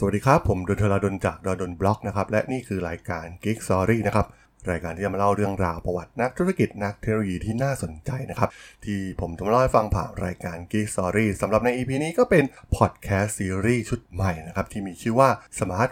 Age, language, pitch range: 20-39, Thai, 95-125 Hz